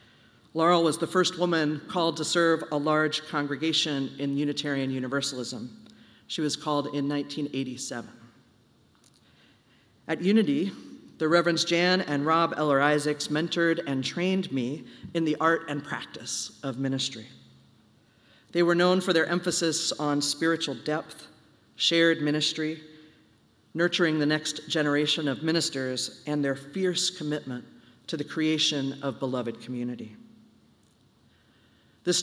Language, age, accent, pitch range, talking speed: English, 40-59, American, 140-170 Hz, 125 wpm